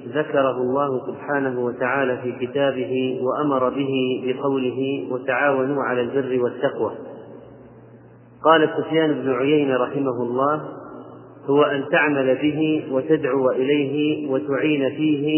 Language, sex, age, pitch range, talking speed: Arabic, male, 30-49, 130-150 Hz, 105 wpm